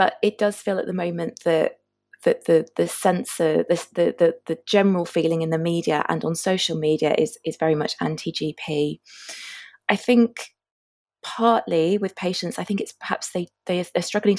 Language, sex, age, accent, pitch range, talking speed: English, female, 20-39, British, 165-200 Hz, 185 wpm